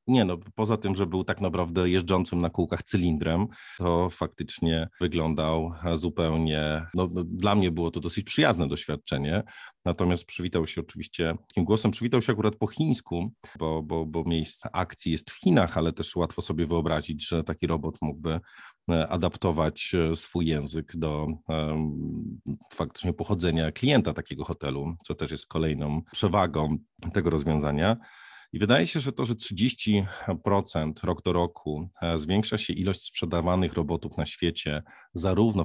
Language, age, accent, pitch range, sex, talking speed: Polish, 40-59, native, 80-95 Hz, male, 145 wpm